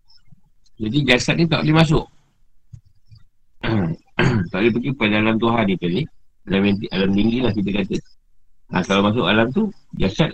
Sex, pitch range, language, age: male, 105-155 Hz, Malay, 50-69